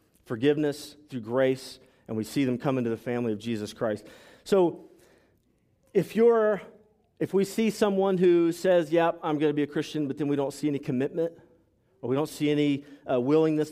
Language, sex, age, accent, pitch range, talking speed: English, male, 40-59, American, 125-165 Hz, 195 wpm